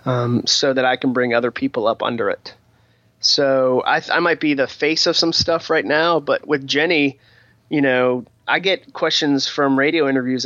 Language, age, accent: English, 30-49, American